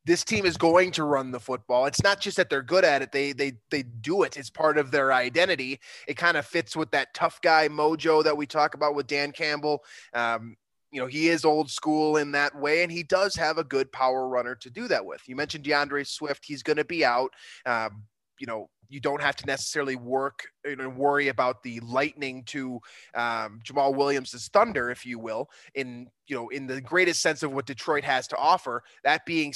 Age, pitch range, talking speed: 20-39, 135-160 Hz, 225 wpm